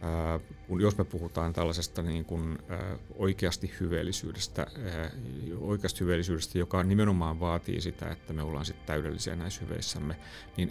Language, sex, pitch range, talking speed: Finnish, male, 85-105 Hz, 125 wpm